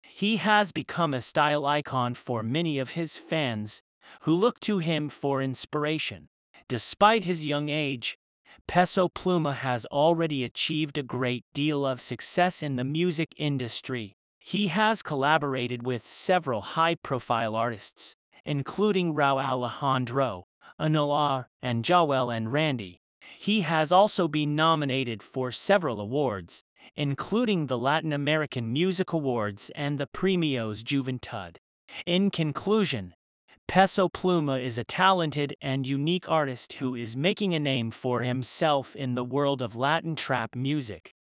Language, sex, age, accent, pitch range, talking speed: English, male, 30-49, American, 125-165 Hz, 135 wpm